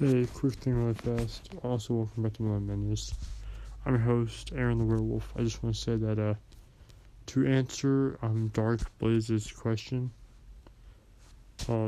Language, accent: English, American